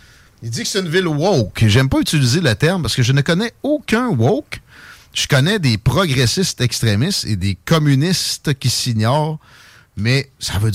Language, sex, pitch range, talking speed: French, male, 110-150 Hz, 180 wpm